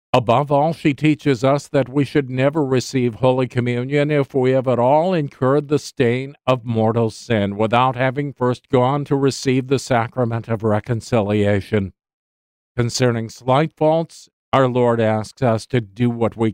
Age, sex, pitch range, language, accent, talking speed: 50-69, male, 110-135 Hz, English, American, 160 wpm